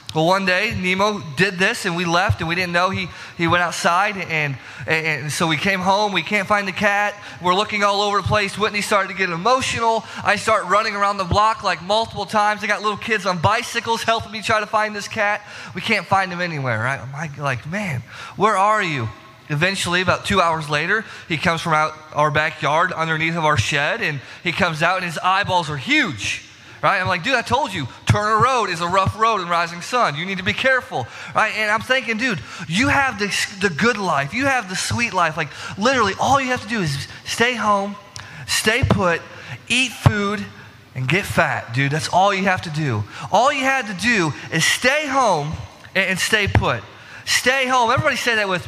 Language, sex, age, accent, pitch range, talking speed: English, male, 20-39, American, 160-225 Hz, 220 wpm